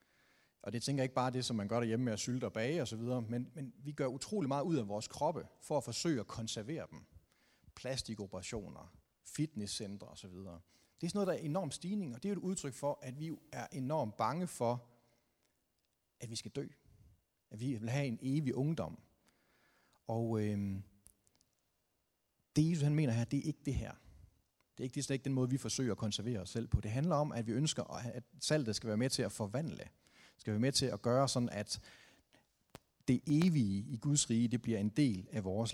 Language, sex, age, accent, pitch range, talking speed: Danish, male, 30-49, native, 110-150 Hz, 220 wpm